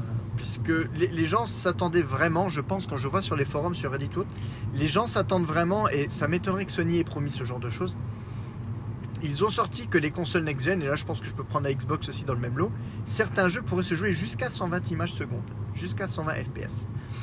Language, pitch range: French, 115-150 Hz